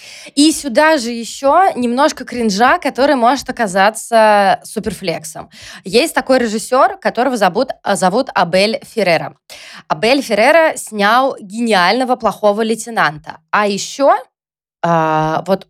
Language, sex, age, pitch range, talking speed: Russian, female, 20-39, 185-240 Hz, 105 wpm